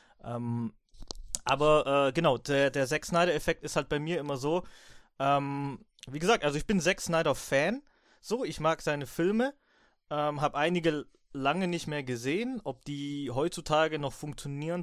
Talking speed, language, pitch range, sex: 160 wpm, German, 125-165 Hz, male